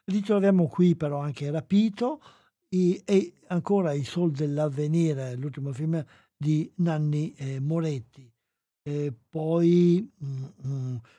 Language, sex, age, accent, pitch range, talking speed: Italian, male, 60-79, native, 140-185 Hz, 105 wpm